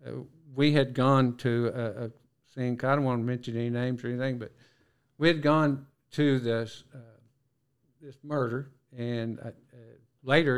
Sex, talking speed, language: male, 170 wpm, English